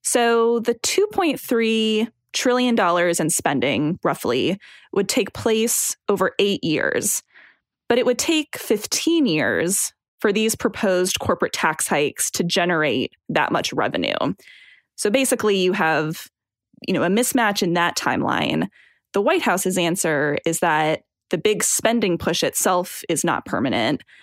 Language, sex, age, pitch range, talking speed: English, female, 10-29, 160-220 Hz, 140 wpm